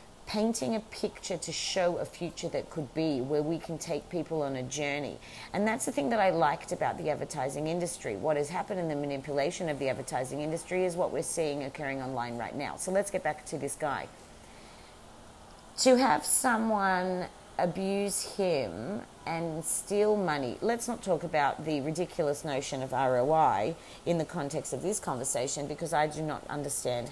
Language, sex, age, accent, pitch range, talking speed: English, female, 40-59, Australian, 135-170 Hz, 180 wpm